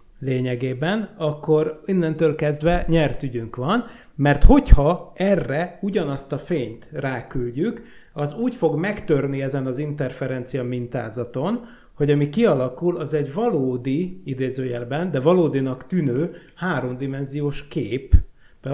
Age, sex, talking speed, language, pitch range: 30-49, male, 110 wpm, Hungarian, 130-160 Hz